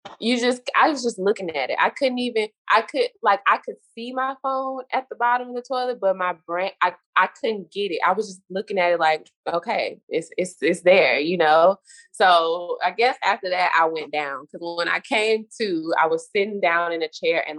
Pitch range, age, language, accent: 160-225 Hz, 20-39, English, American